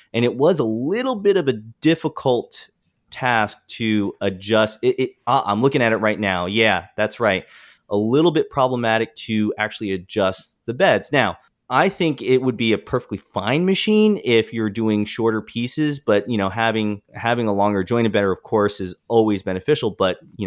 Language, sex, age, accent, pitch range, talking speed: English, male, 30-49, American, 95-120 Hz, 190 wpm